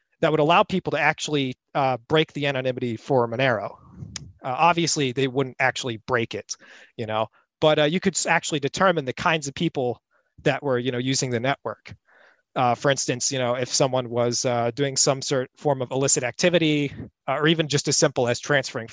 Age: 30-49